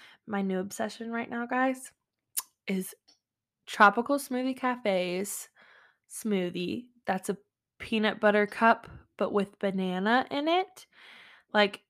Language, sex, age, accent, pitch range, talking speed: English, female, 20-39, American, 185-240 Hz, 110 wpm